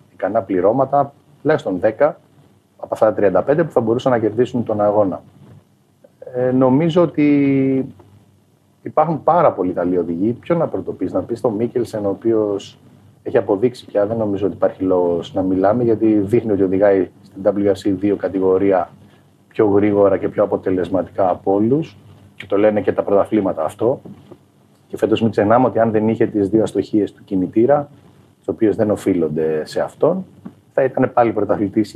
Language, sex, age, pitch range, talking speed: Greek, male, 30-49, 100-125 Hz, 165 wpm